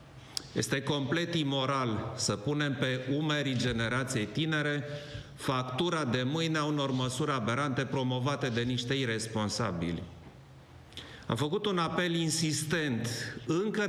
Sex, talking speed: male, 110 wpm